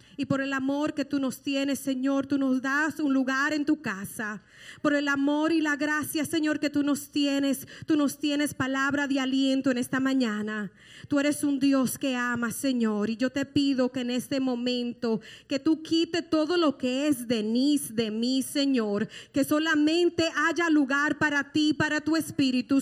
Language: English